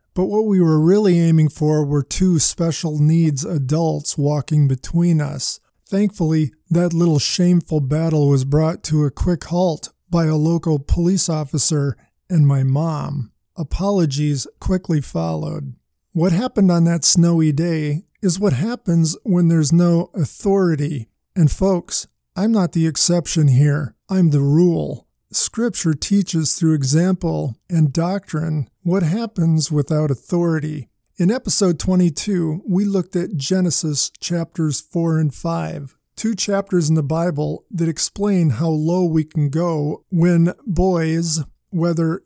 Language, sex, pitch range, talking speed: English, male, 150-180 Hz, 135 wpm